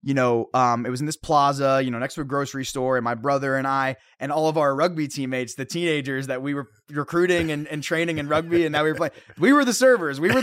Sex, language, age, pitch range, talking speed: male, English, 20-39, 130-175 Hz, 275 wpm